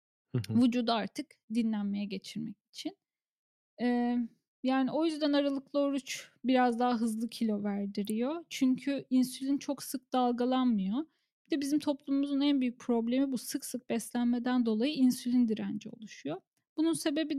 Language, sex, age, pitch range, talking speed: Turkish, female, 10-29, 225-285 Hz, 130 wpm